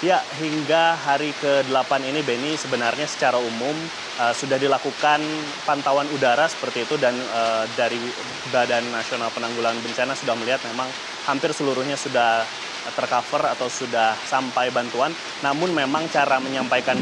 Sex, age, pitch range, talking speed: male, 20-39, 120-140 Hz, 135 wpm